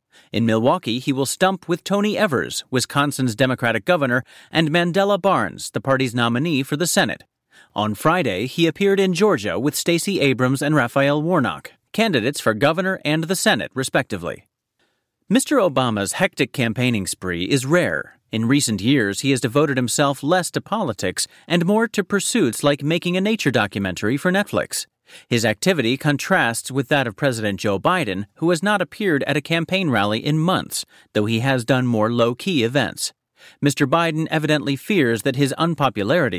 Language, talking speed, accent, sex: English, 165 wpm, American, male